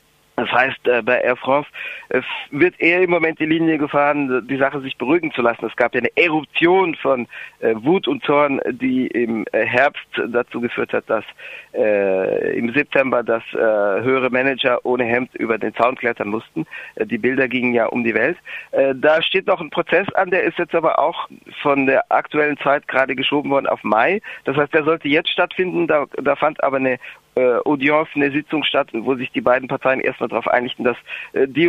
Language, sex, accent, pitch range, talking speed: German, male, German, 130-165 Hz, 185 wpm